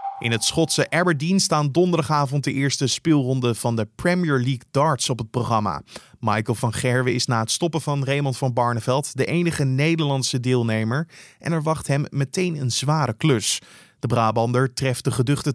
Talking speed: 175 wpm